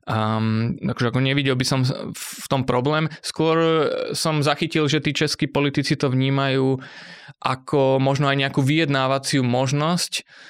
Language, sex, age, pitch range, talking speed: Slovak, male, 20-39, 120-140 Hz, 130 wpm